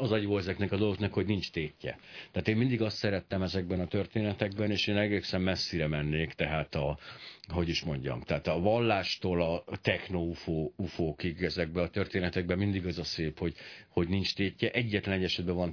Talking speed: 180 wpm